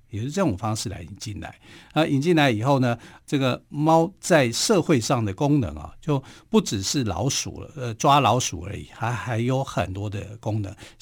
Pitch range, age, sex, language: 105-135 Hz, 50-69, male, Chinese